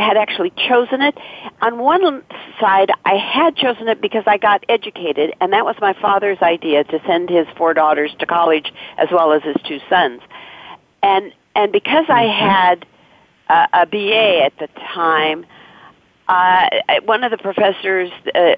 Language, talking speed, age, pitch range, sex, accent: English, 165 wpm, 50-69, 190-240 Hz, female, American